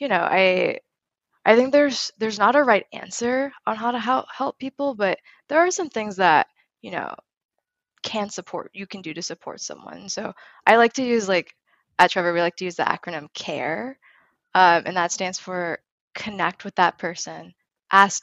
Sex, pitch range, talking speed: female, 180-220 Hz, 190 wpm